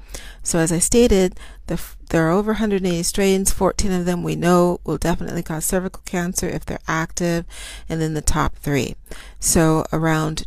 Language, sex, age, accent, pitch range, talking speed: English, female, 40-59, American, 150-180 Hz, 165 wpm